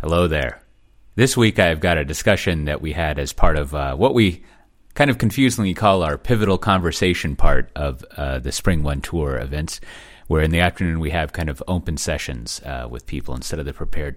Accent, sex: American, male